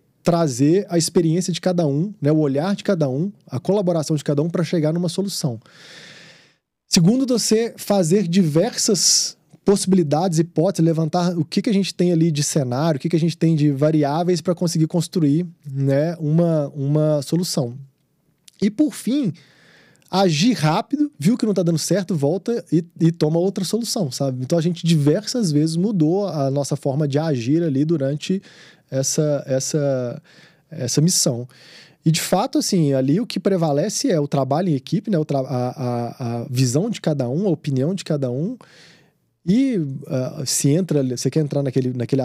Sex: male